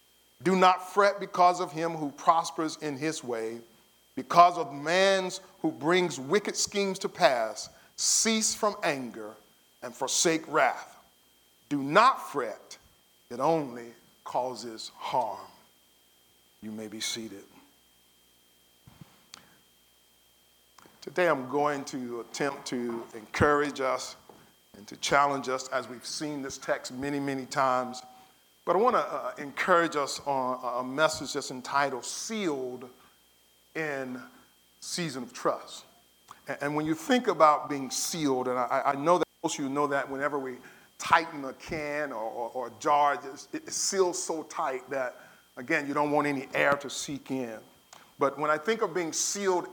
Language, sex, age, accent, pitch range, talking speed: English, male, 40-59, American, 120-165 Hz, 145 wpm